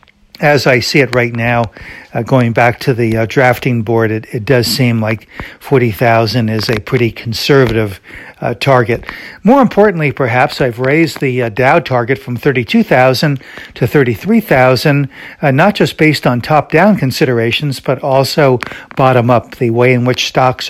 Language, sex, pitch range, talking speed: English, male, 115-140 Hz, 155 wpm